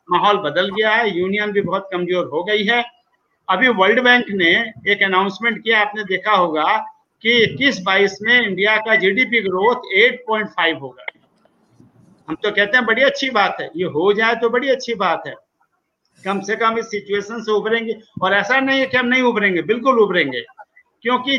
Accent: native